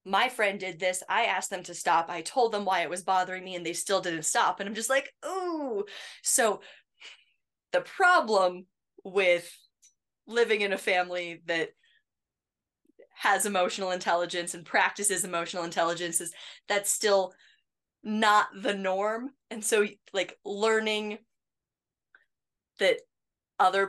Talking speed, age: 140 wpm, 20-39